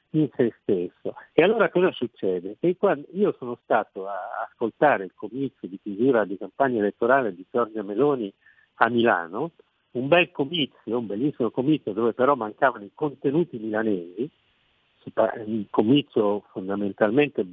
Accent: native